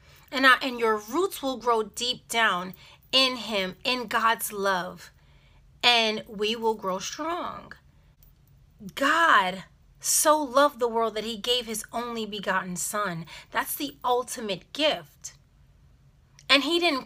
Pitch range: 215-280 Hz